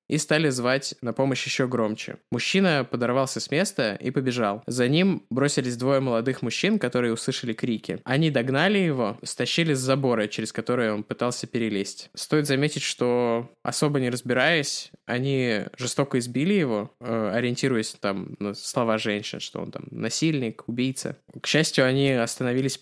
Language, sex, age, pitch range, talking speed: Russian, male, 20-39, 115-145 Hz, 150 wpm